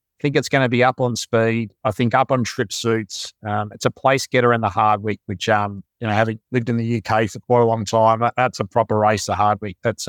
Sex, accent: male, Australian